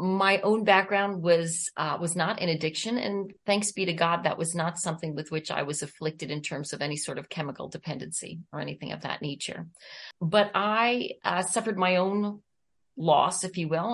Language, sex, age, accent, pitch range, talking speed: English, female, 40-59, American, 155-190 Hz, 200 wpm